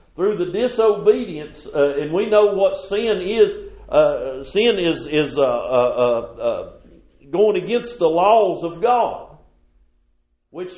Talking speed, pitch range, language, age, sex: 140 wpm, 165-210 Hz, English, 50-69, male